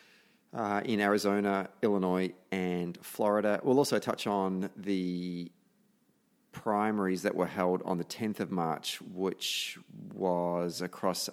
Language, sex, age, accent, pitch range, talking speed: English, male, 30-49, Australian, 90-105 Hz, 120 wpm